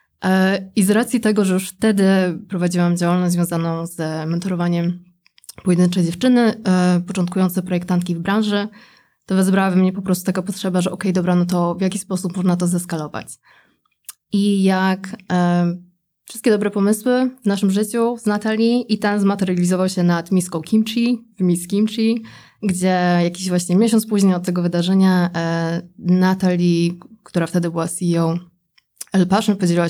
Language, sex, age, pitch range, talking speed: Polish, female, 20-39, 175-200 Hz, 155 wpm